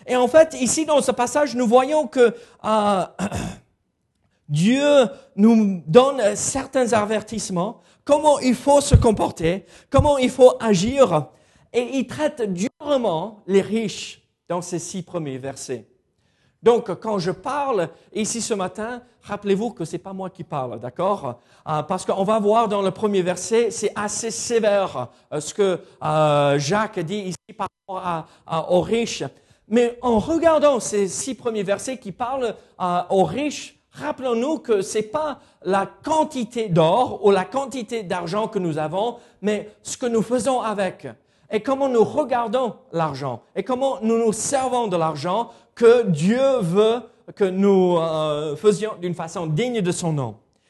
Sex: male